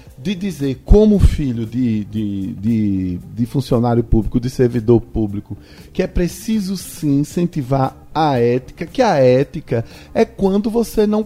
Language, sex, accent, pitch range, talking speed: Portuguese, male, Brazilian, 130-200 Hz, 135 wpm